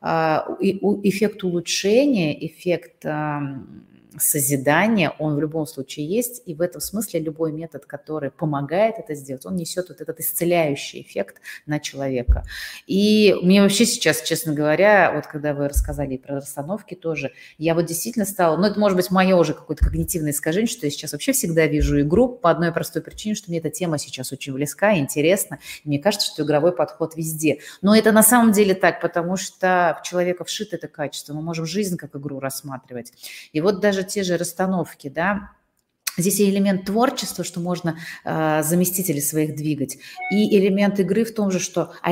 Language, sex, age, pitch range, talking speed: Russian, female, 30-49, 150-200 Hz, 180 wpm